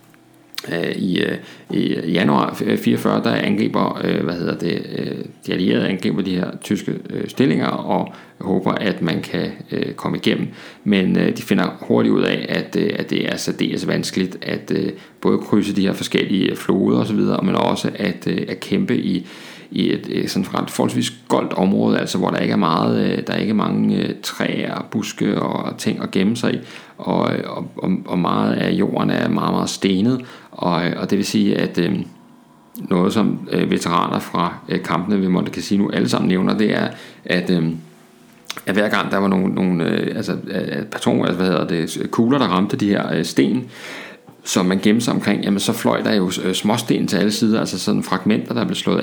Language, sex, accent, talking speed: Danish, male, native, 190 wpm